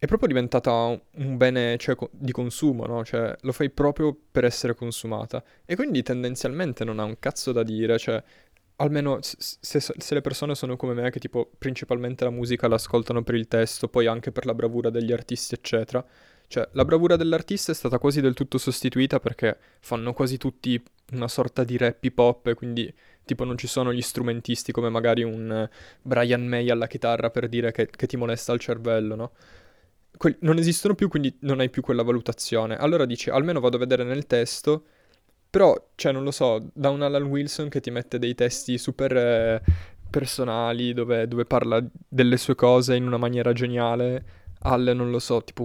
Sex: male